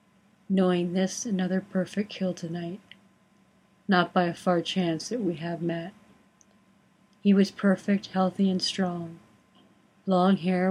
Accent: American